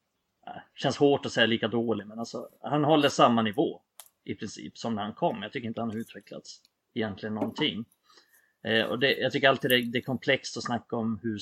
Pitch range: 110-130 Hz